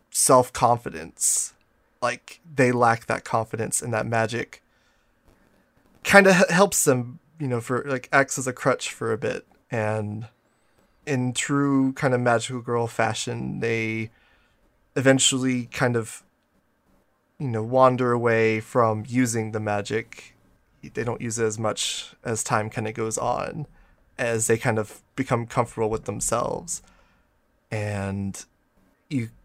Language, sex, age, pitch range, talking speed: English, male, 20-39, 110-135 Hz, 135 wpm